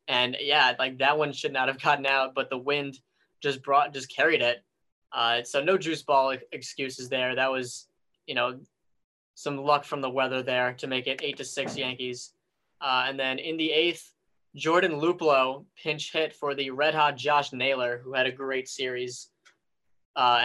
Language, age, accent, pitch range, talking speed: English, 10-29, American, 130-145 Hz, 190 wpm